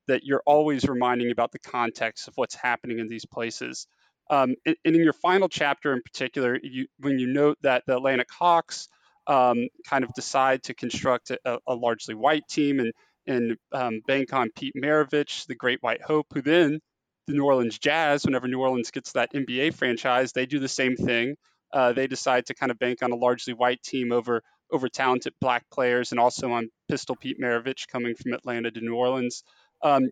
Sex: male